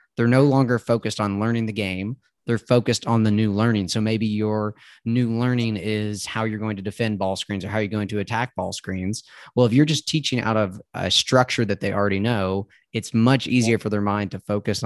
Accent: American